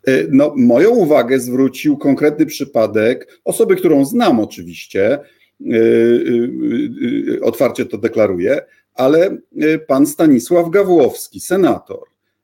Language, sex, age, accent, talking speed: Polish, male, 50-69, native, 85 wpm